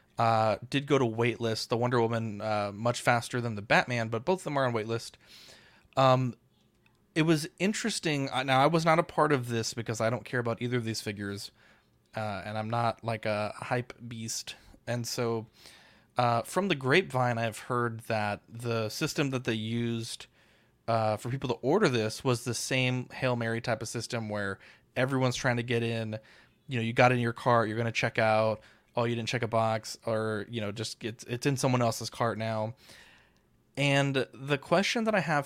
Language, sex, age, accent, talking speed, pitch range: English, male, 20-39, American, 200 wpm, 110-130 Hz